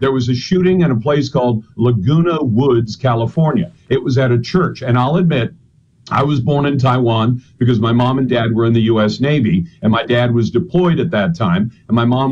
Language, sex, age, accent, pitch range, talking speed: English, male, 50-69, American, 125-165 Hz, 220 wpm